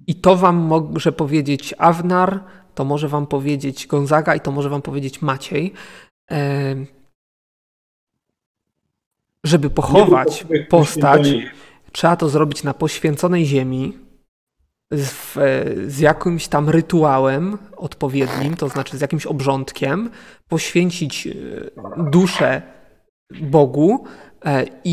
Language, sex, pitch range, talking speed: Polish, male, 145-175 Hz, 95 wpm